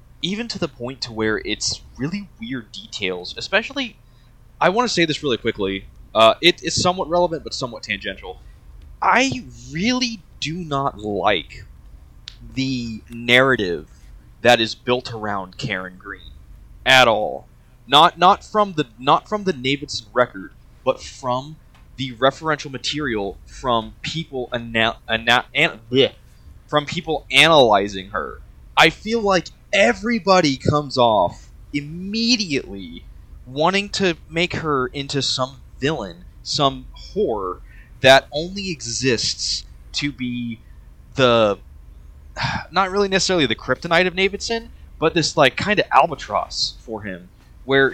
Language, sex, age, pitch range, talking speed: English, male, 20-39, 110-165 Hz, 130 wpm